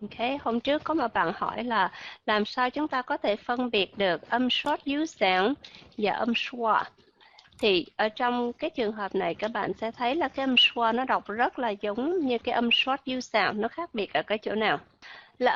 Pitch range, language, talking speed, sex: 210-275 Hz, Vietnamese, 225 wpm, female